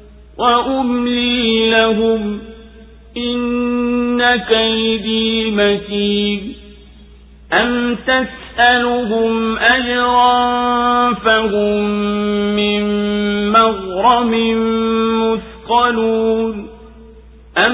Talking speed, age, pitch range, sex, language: 40 wpm, 50-69, 215-245 Hz, male, Swahili